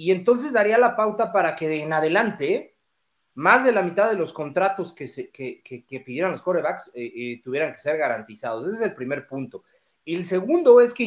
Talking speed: 215 wpm